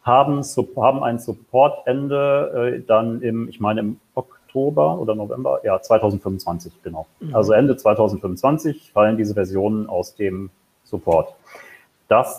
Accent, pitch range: German, 100-125 Hz